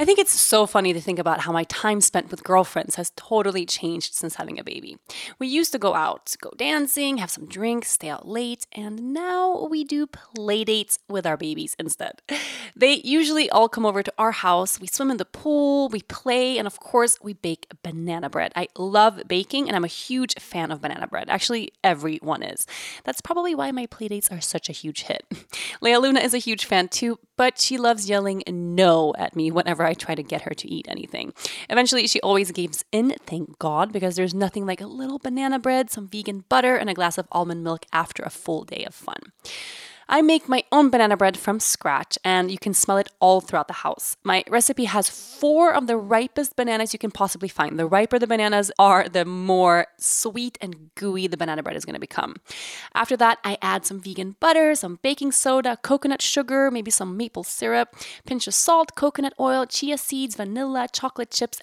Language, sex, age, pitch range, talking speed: English, female, 20-39, 185-255 Hz, 210 wpm